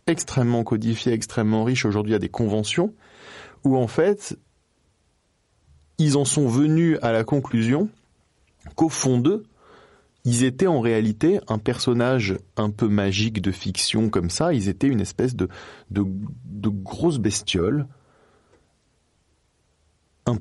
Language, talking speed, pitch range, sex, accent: French, 130 wpm, 105-135 Hz, male, French